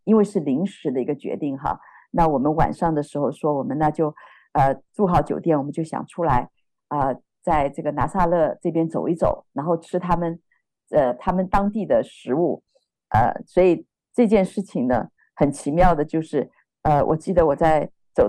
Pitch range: 160-200 Hz